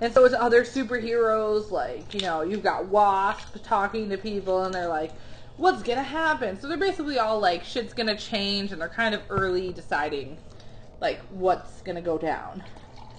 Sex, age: female, 20-39